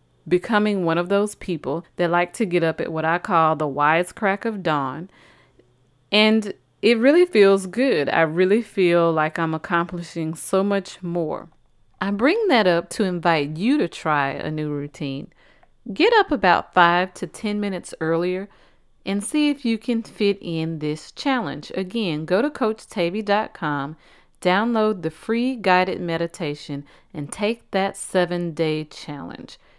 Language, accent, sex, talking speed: English, American, female, 155 wpm